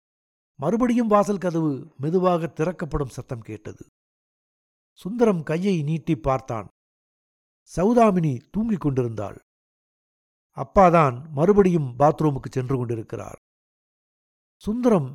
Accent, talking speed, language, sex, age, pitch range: native, 80 wpm, Tamil, male, 60-79, 130-195 Hz